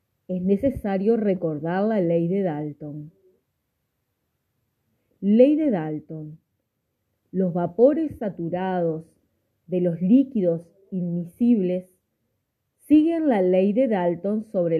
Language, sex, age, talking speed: Spanish, female, 30-49, 95 wpm